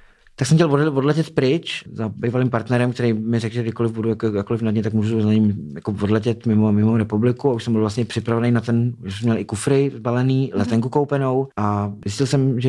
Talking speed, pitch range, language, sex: 220 wpm, 105-120 Hz, Czech, male